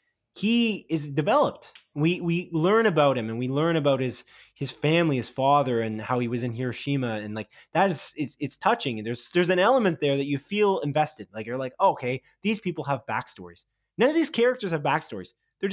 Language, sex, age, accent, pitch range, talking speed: English, male, 20-39, American, 135-190 Hz, 210 wpm